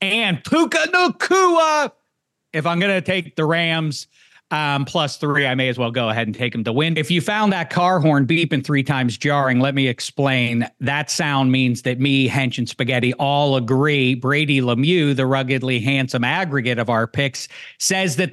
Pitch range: 135-190 Hz